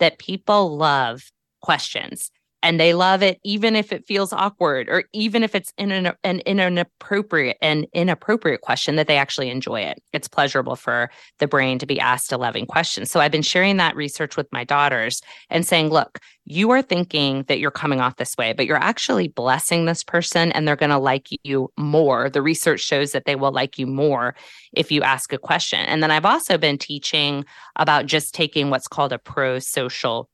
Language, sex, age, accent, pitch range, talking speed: English, female, 20-39, American, 140-175 Hz, 200 wpm